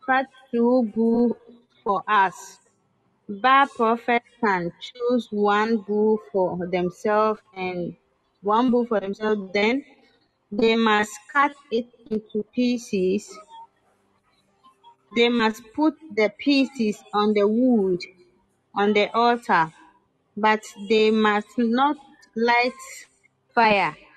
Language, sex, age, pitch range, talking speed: English, female, 30-49, 205-245 Hz, 105 wpm